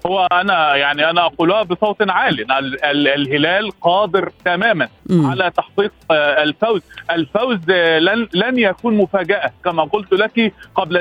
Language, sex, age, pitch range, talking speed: Arabic, male, 40-59, 165-210 Hz, 120 wpm